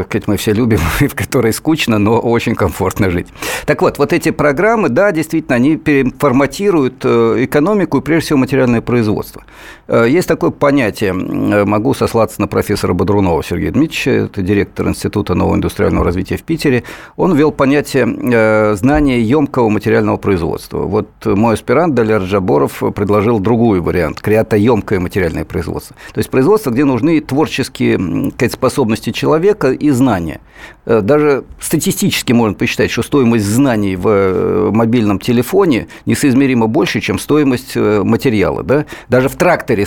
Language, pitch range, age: Russian, 105-140 Hz, 50-69